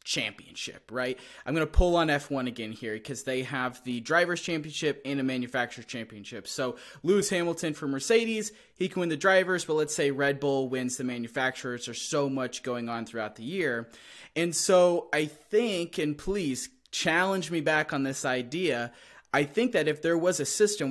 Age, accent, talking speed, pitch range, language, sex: 20-39, American, 185 wpm, 130-170 Hz, English, male